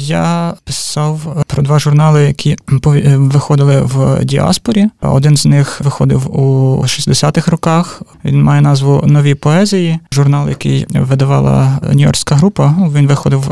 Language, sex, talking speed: Ukrainian, male, 125 wpm